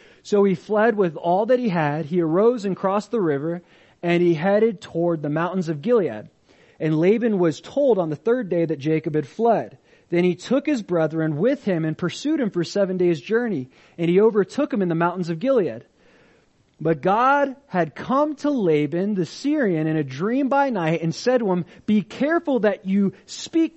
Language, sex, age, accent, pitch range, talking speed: English, male, 30-49, American, 170-225 Hz, 200 wpm